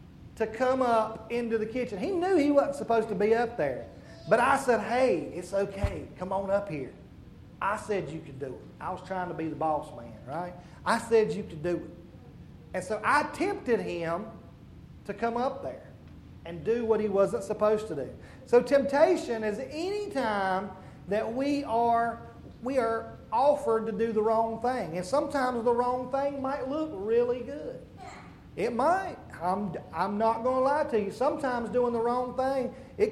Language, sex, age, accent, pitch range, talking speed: English, male, 40-59, American, 200-275 Hz, 185 wpm